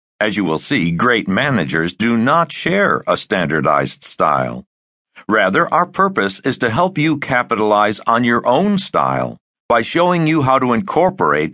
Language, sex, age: English, male, 60-79